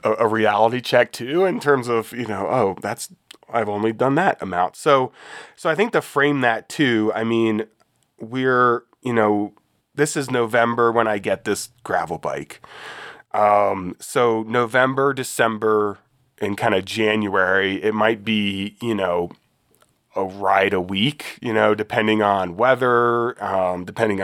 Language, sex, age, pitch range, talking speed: English, male, 20-39, 100-120 Hz, 155 wpm